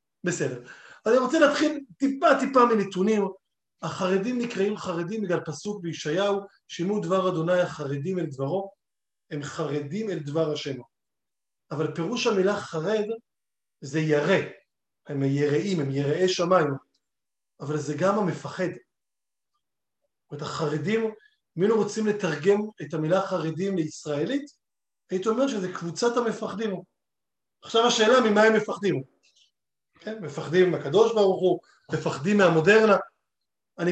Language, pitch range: Hebrew, 165-220 Hz